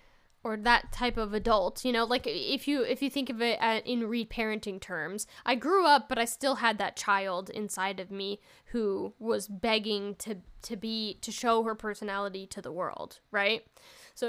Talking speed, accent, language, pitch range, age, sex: 195 wpm, American, English, 215-260 Hz, 10-29, female